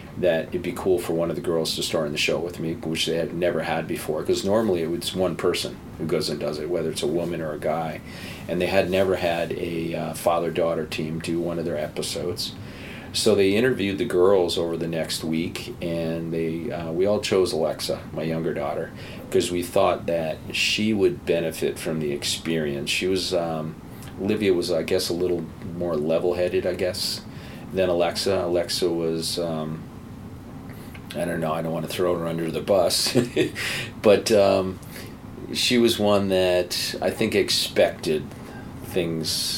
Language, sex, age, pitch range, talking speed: English, male, 40-59, 80-95 Hz, 185 wpm